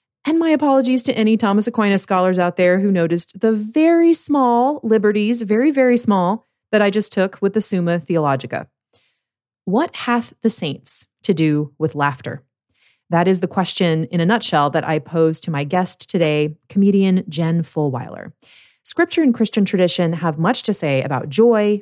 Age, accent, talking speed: 30-49, American, 170 wpm